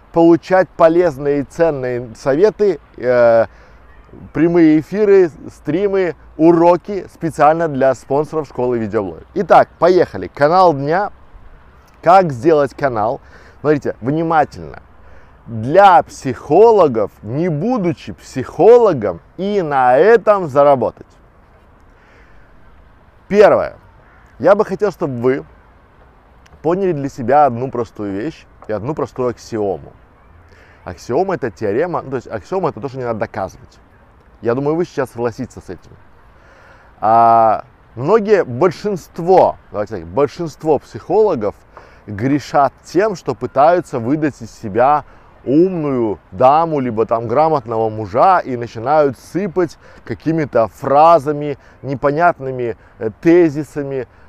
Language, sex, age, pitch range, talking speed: Russian, male, 20-39, 110-165 Hz, 105 wpm